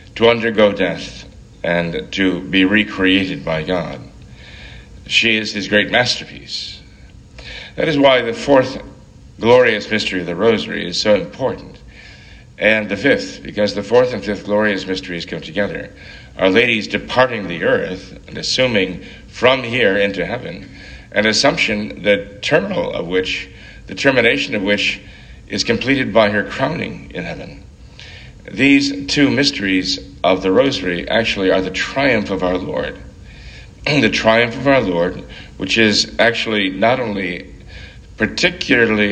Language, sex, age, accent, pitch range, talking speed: English, male, 60-79, American, 95-110 Hz, 140 wpm